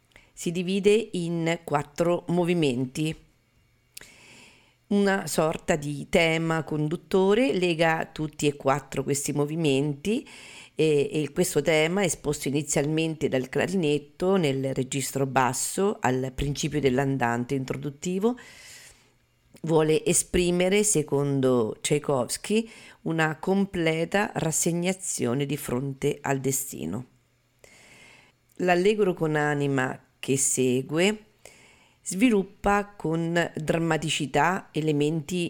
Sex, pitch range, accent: female, 140-170 Hz, native